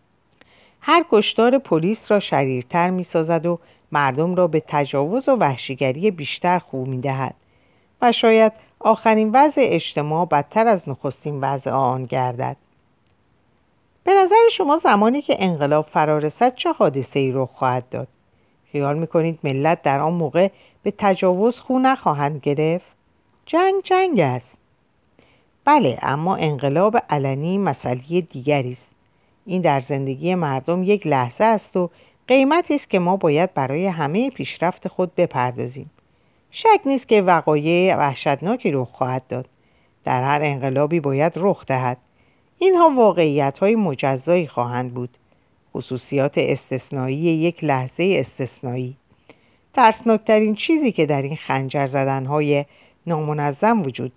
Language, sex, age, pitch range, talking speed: Persian, female, 50-69, 135-210 Hz, 125 wpm